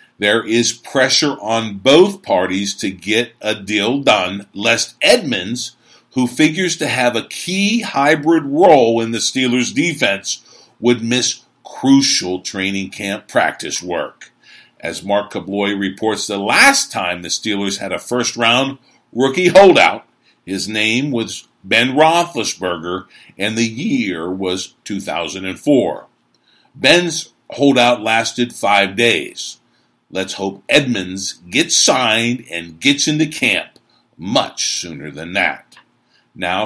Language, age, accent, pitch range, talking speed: English, 50-69, American, 100-140 Hz, 125 wpm